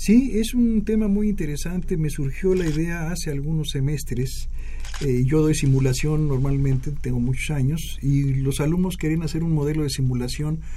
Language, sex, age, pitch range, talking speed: Spanish, male, 50-69, 130-165 Hz, 165 wpm